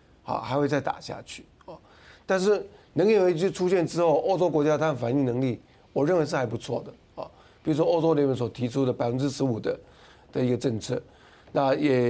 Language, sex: Chinese, male